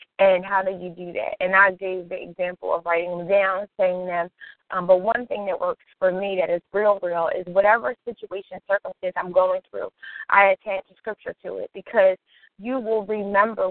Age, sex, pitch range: 20-39, female, 180-210 Hz